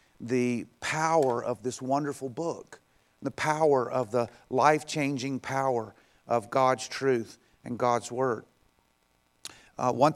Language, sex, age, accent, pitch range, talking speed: English, male, 40-59, American, 115-135 Hz, 120 wpm